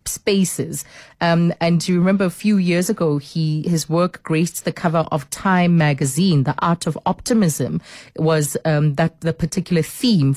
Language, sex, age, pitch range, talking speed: English, female, 30-49, 150-185 Hz, 160 wpm